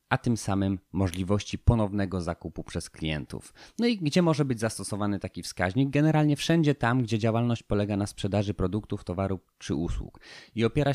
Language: Polish